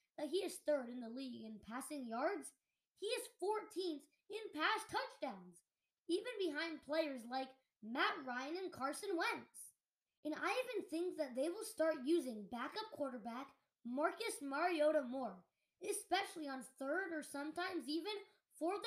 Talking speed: 145 wpm